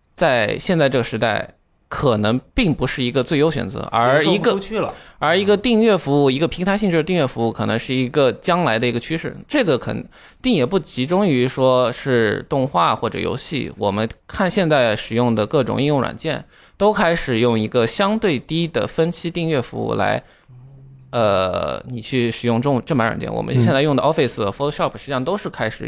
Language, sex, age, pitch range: Chinese, male, 20-39, 120-170 Hz